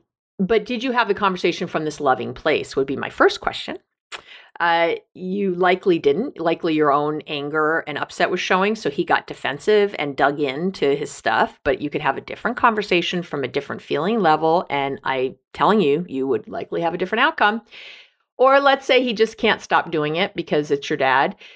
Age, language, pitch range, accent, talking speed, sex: 50-69, English, 170-235 Hz, American, 200 wpm, female